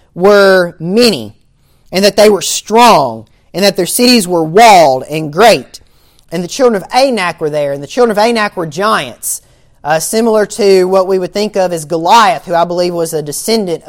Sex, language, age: male, English, 30-49